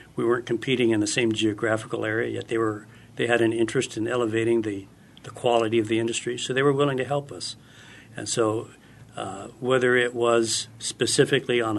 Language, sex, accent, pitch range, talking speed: English, male, American, 110-125 Hz, 195 wpm